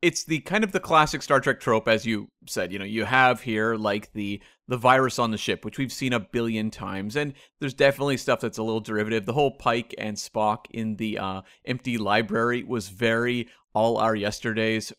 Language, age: English, 30-49